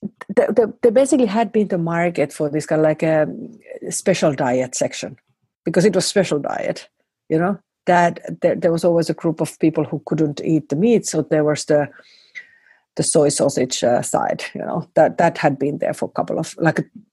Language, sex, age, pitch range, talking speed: English, female, 50-69, 155-200 Hz, 205 wpm